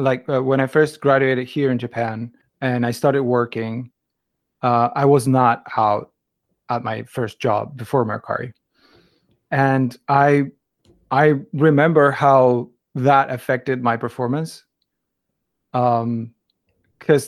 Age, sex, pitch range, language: 30-49, male, 125-145 Hz, Japanese